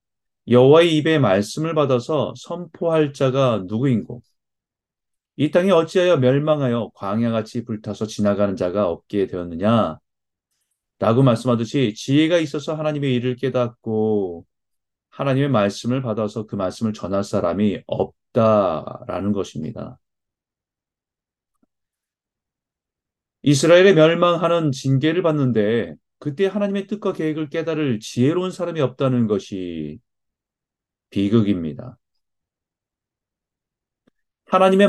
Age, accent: 30-49, native